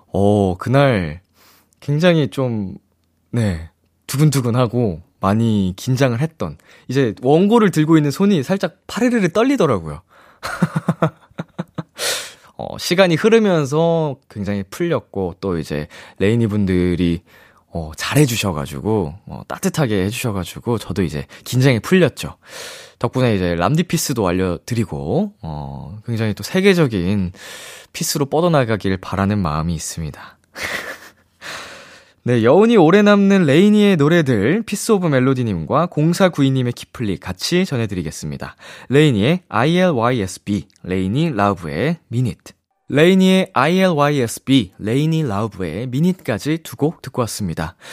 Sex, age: male, 20-39